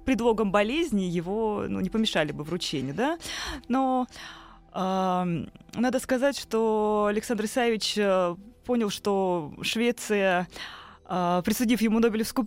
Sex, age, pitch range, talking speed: female, 20-39, 175-225 Hz, 110 wpm